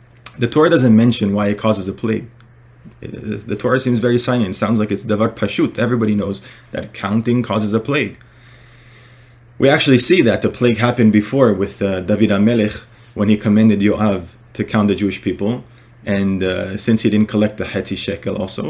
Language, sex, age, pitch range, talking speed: English, male, 20-39, 105-125 Hz, 185 wpm